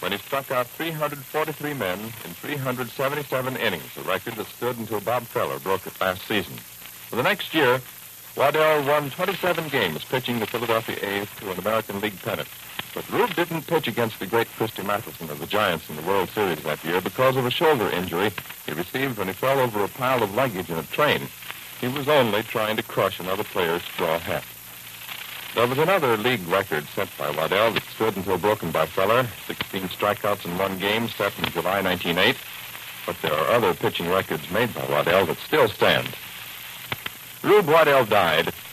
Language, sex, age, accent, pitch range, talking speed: English, male, 60-79, American, 100-135 Hz, 185 wpm